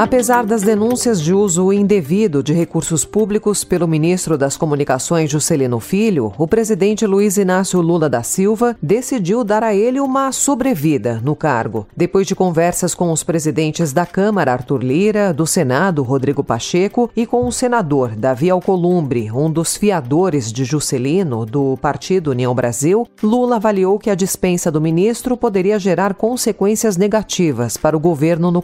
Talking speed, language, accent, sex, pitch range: 155 wpm, Portuguese, Brazilian, female, 150-210 Hz